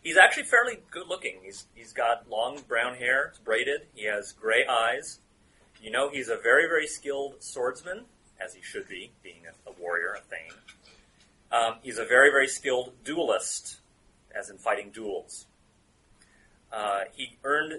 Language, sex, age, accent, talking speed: English, male, 30-49, American, 160 wpm